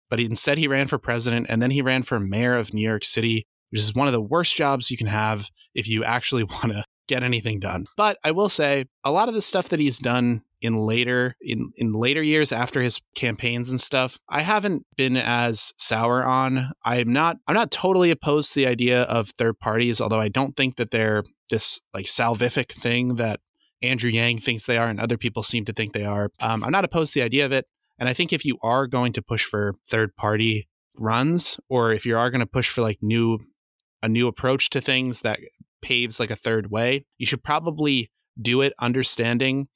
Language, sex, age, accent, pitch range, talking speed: English, male, 20-39, American, 115-135 Hz, 225 wpm